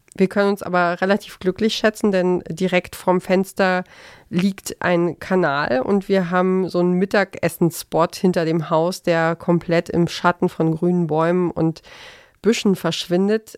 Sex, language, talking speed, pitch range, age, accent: female, German, 145 wpm, 175-205 Hz, 30-49, German